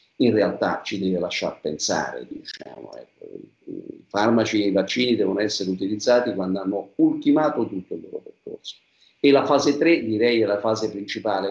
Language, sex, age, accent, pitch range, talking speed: Italian, male, 50-69, native, 105-135 Hz, 165 wpm